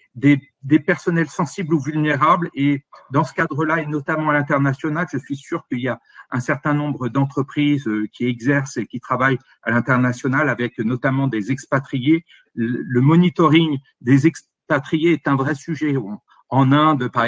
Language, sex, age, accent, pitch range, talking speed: French, male, 50-69, French, 135-160 Hz, 165 wpm